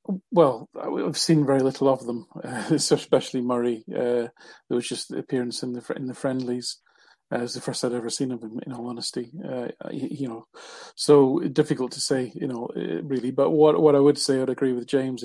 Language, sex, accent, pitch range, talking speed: English, male, British, 120-135 Hz, 215 wpm